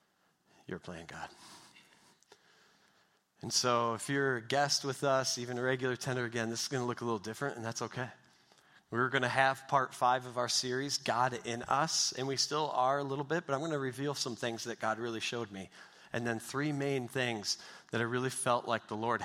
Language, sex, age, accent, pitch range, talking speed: English, male, 40-59, American, 120-145 Hz, 220 wpm